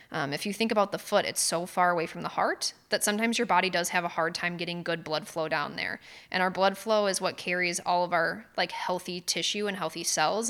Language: English